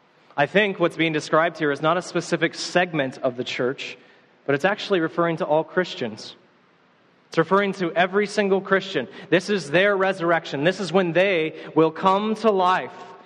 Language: English